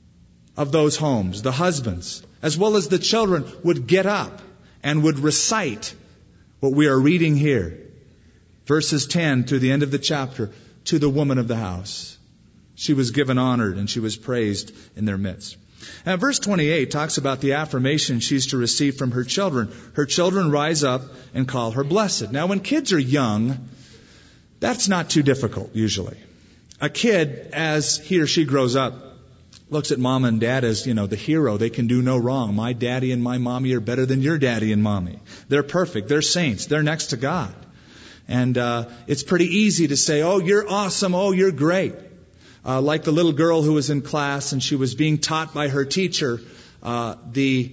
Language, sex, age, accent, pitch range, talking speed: English, male, 40-59, American, 120-155 Hz, 190 wpm